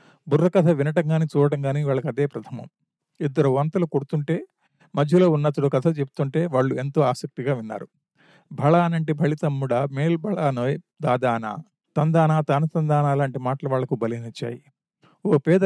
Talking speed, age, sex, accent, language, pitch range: 130 wpm, 50-69, male, native, Telugu, 140-165 Hz